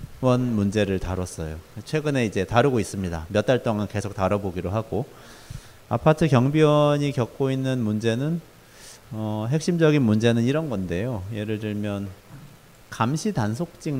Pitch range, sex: 100-135 Hz, male